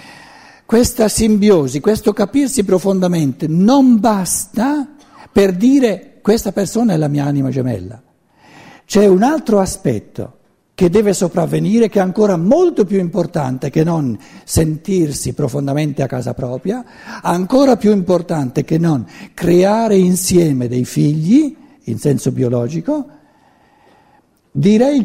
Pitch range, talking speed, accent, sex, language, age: 150-230 Hz, 115 wpm, native, male, Italian, 60-79